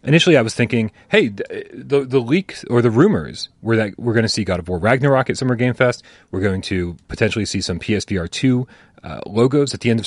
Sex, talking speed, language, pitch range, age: male, 225 wpm, English, 95-130 Hz, 30-49